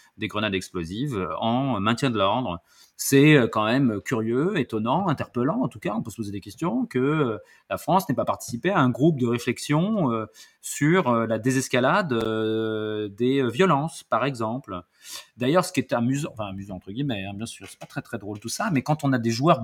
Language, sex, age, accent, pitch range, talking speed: French, male, 30-49, French, 105-150 Hz, 200 wpm